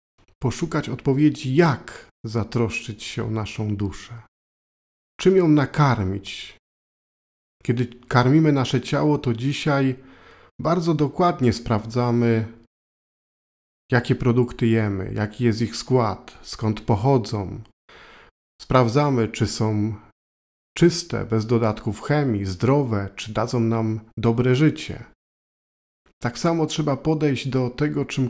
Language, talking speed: Polish, 105 wpm